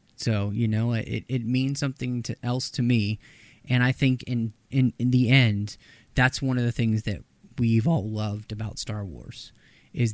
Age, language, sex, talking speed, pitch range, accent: 30-49, English, male, 190 wpm, 110-130 Hz, American